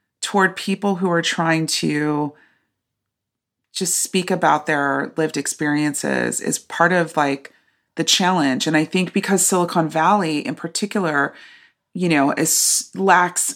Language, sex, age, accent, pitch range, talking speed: English, female, 30-49, American, 155-180 Hz, 130 wpm